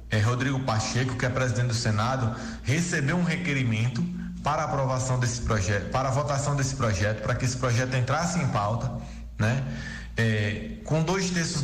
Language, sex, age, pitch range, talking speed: Portuguese, male, 20-39, 120-155 Hz, 150 wpm